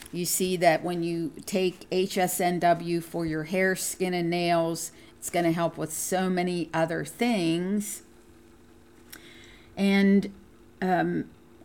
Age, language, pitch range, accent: 50-69, English, 165-185 Hz, American